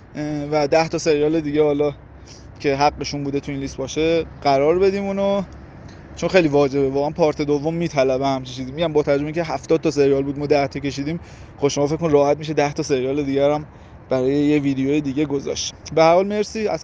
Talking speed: 195 wpm